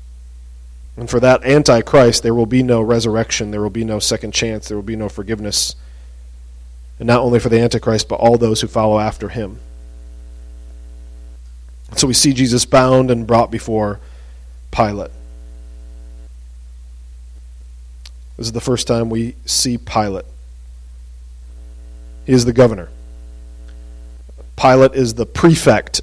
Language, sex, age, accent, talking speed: English, male, 40-59, American, 135 wpm